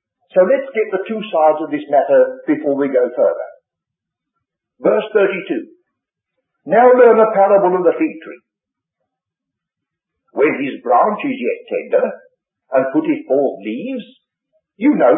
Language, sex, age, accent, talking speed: English, male, 60-79, British, 140 wpm